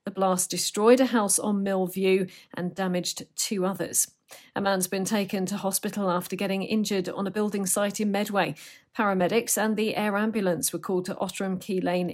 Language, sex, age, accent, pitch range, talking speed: English, female, 40-59, British, 180-230 Hz, 185 wpm